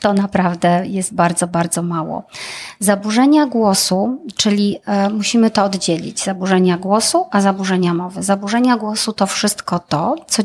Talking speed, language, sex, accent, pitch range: 140 wpm, Polish, female, native, 185-220 Hz